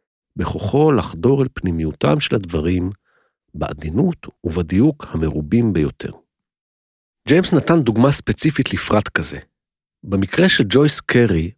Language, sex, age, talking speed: Hebrew, male, 50-69, 105 wpm